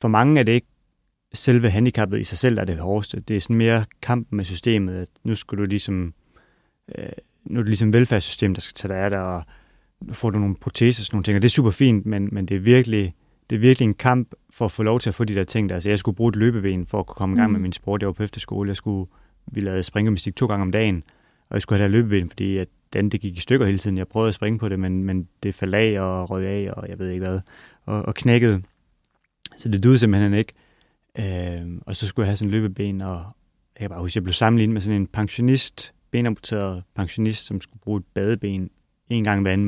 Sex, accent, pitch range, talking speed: male, Danish, 95-110 Hz, 255 wpm